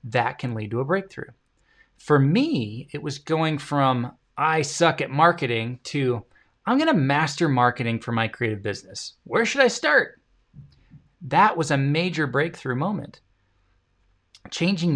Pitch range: 125-185 Hz